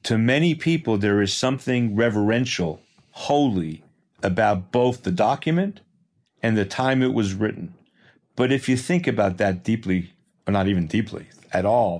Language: English